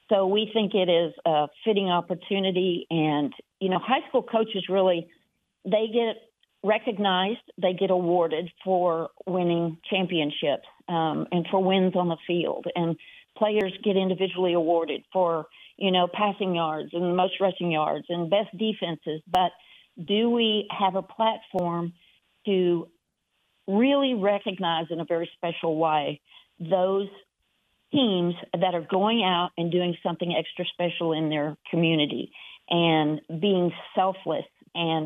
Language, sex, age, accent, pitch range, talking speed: English, female, 50-69, American, 170-190 Hz, 140 wpm